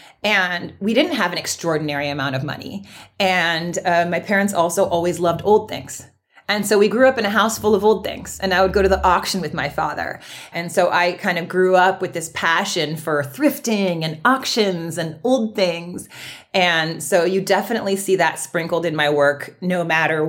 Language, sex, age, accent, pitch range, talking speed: English, female, 30-49, American, 155-195 Hz, 205 wpm